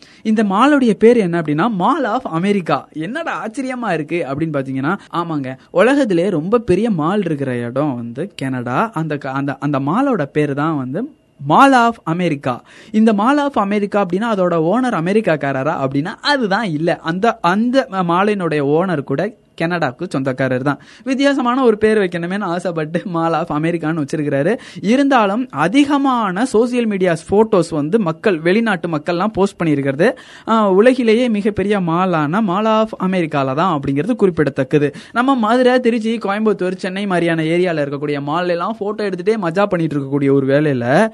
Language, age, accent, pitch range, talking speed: Tamil, 20-39, native, 155-225 Hz, 90 wpm